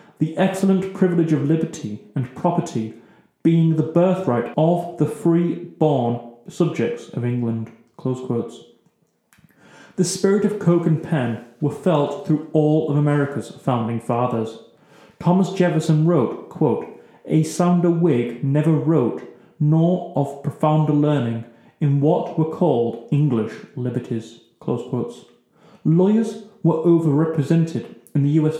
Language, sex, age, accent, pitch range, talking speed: English, male, 30-49, British, 125-175 Hz, 115 wpm